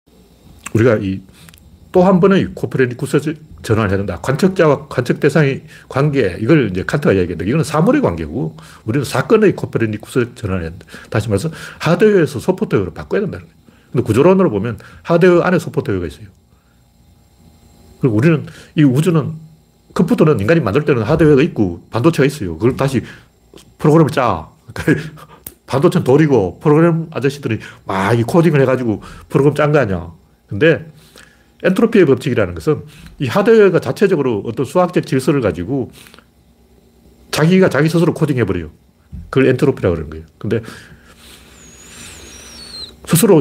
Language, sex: Korean, male